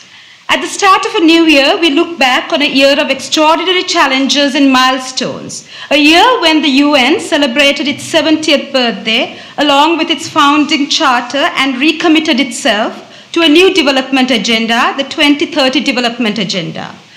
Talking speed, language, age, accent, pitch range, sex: 155 wpm, English, 50-69, Indian, 270-330 Hz, female